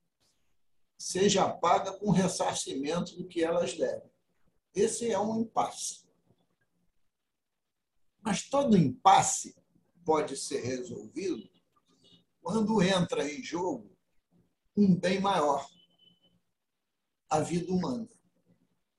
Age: 60-79